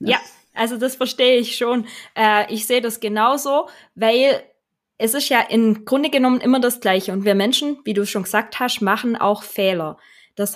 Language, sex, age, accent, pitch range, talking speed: German, female, 20-39, German, 200-235 Hz, 190 wpm